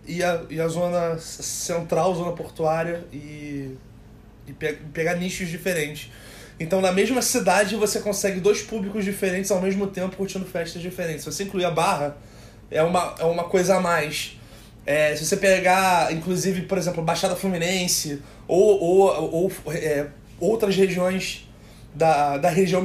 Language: Portuguese